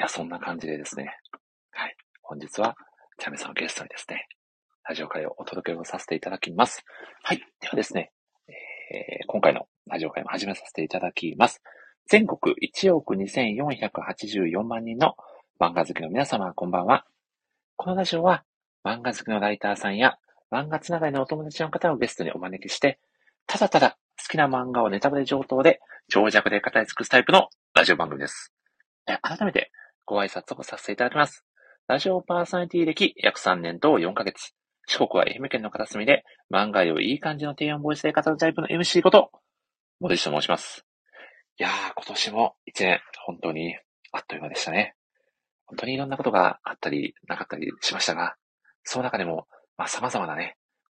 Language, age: Japanese, 40-59